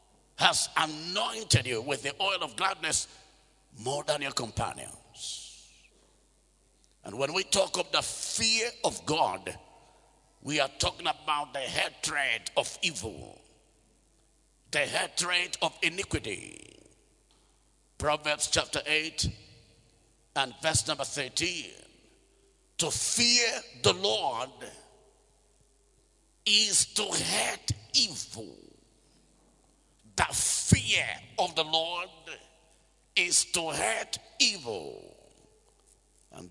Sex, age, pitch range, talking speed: male, 50-69, 145-180 Hz, 95 wpm